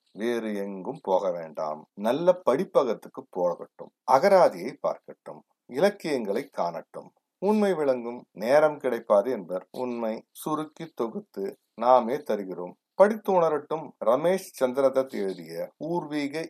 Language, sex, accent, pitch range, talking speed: Tamil, male, native, 105-165 Hz, 100 wpm